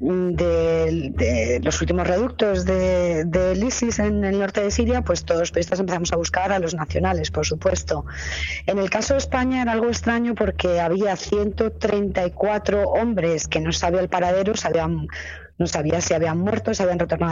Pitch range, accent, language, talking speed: 165-215 Hz, Spanish, Spanish, 185 wpm